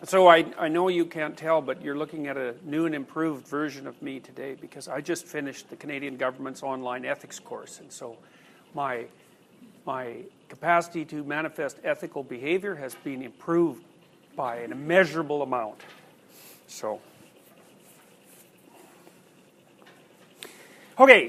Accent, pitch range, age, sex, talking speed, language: American, 140-175 Hz, 50-69, male, 130 wpm, English